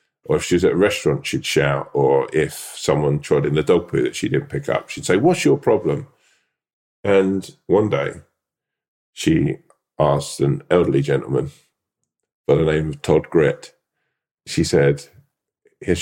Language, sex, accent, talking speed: English, male, British, 165 wpm